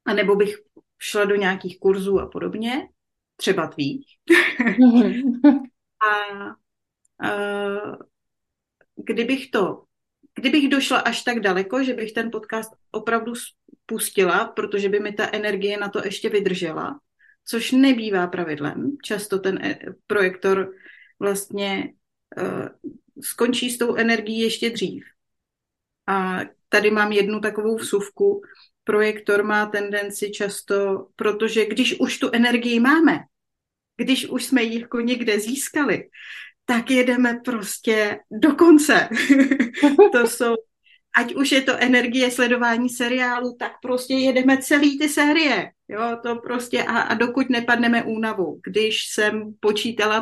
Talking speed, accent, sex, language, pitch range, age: 120 wpm, native, female, Czech, 205-250 Hz, 30-49